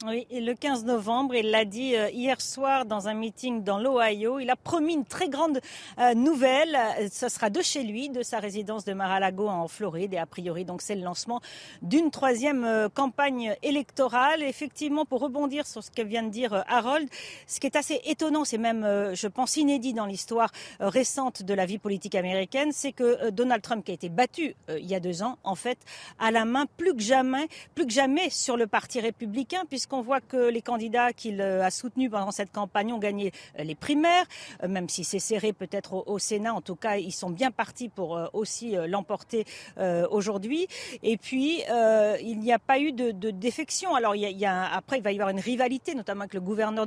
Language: French